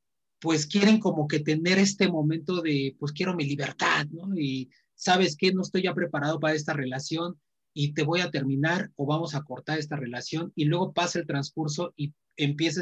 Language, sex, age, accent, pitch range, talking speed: Spanish, male, 30-49, Mexican, 140-170 Hz, 190 wpm